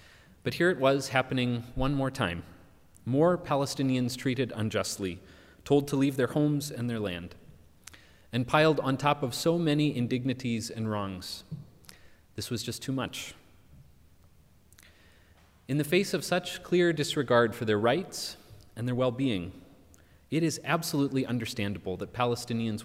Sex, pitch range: male, 95-135 Hz